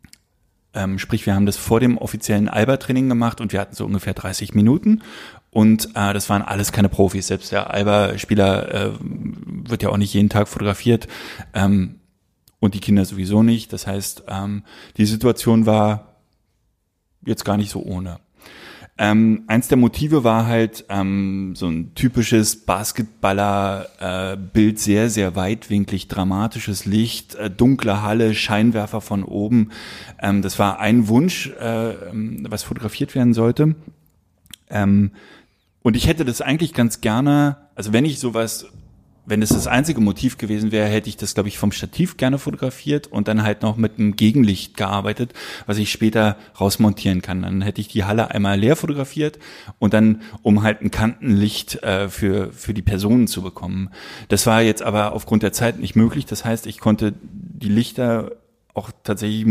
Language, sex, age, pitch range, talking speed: German, male, 20-39, 100-115 Hz, 165 wpm